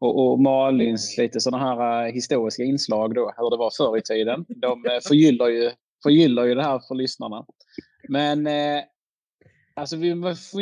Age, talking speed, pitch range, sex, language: 20-39, 155 wpm, 115-140 Hz, male, Swedish